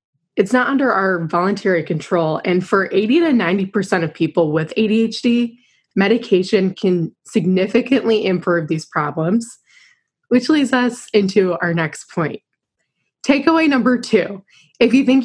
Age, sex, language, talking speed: 20-39, female, English, 135 wpm